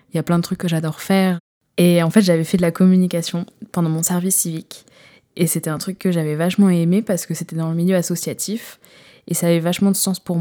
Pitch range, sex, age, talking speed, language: 160-185 Hz, female, 20-39, 250 wpm, French